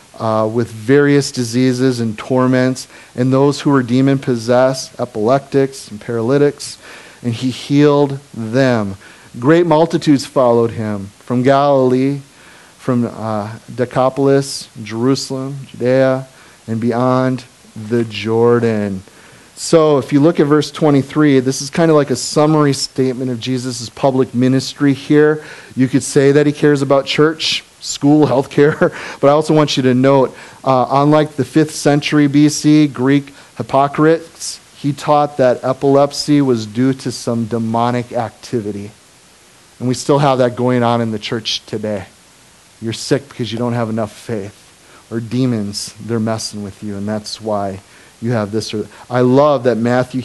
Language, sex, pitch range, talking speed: English, male, 115-140 Hz, 150 wpm